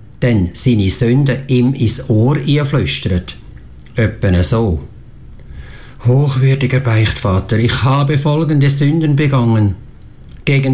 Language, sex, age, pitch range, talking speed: English, male, 50-69, 105-135 Hz, 95 wpm